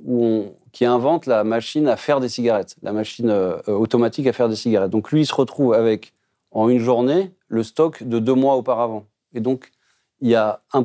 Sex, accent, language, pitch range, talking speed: male, French, French, 105-130 Hz, 210 wpm